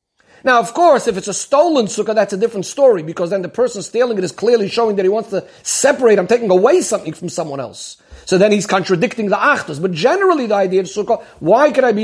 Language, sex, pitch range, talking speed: English, male, 190-245 Hz, 245 wpm